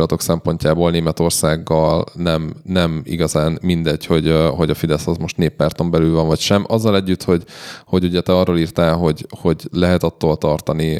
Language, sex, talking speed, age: Hungarian, male, 165 wpm, 20-39